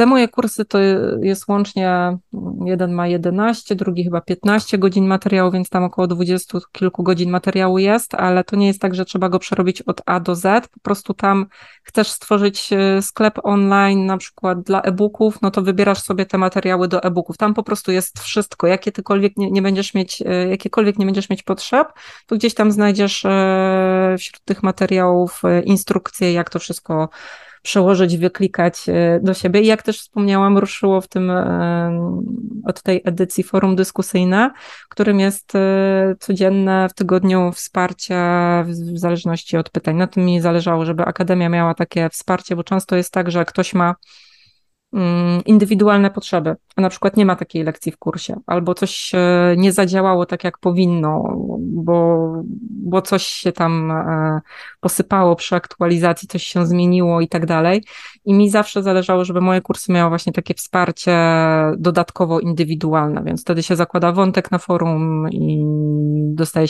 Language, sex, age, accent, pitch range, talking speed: Polish, female, 20-39, native, 175-200 Hz, 155 wpm